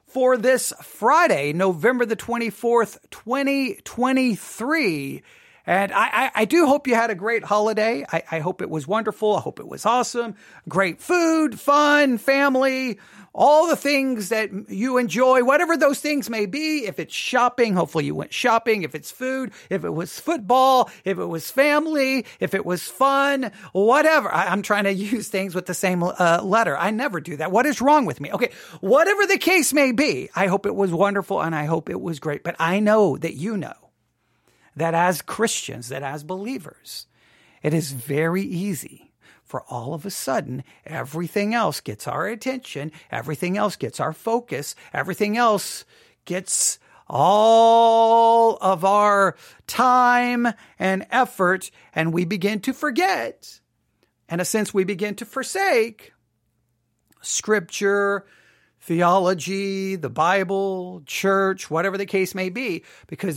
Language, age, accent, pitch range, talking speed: English, 40-59, American, 180-250 Hz, 155 wpm